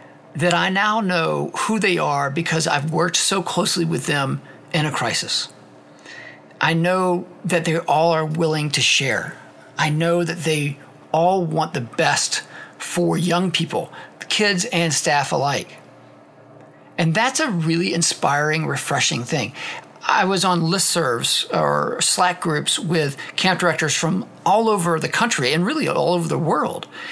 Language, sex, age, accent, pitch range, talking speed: English, male, 50-69, American, 150-175 Hz, 155 wpm